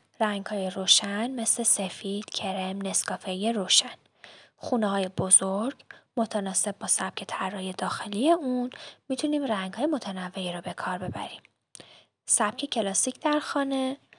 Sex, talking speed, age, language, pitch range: female, 125 wpm, 10-29, Persian, 195-250 Hz